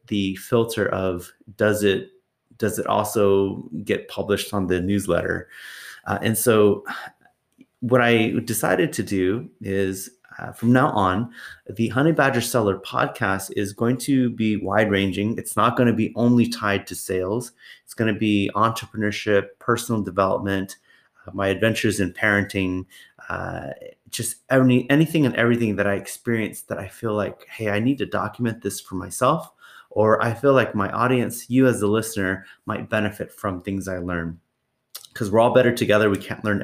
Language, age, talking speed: English, 30-49, 165 wpm